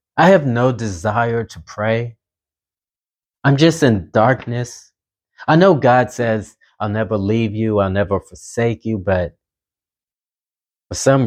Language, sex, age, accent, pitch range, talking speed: English, male, 30-49, American, 90-120 Hz, 135 wpm